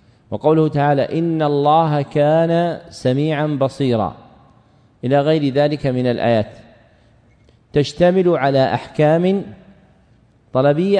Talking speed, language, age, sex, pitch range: 85 wpm, Arabic, 40-59, male, 130-165 Hz